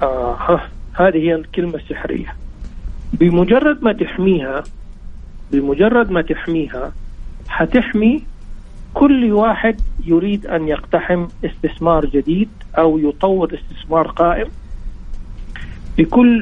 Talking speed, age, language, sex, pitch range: 90 wpm, 50-69, Arabic, male, 155-180 Hz